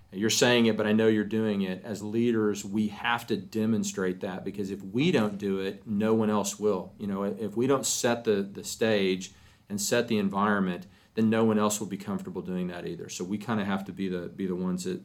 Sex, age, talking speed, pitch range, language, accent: male, 40-59, 245 wpm, 100-115 Hz, English, American